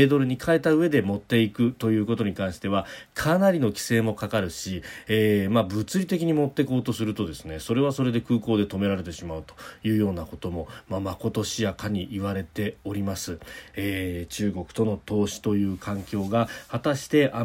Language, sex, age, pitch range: Japanese, male, 40-59, 100-130 Hz